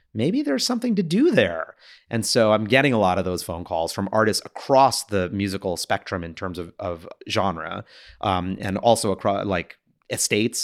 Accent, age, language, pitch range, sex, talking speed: American, 30-49, English, 90-110 Hz, male, 185 wpm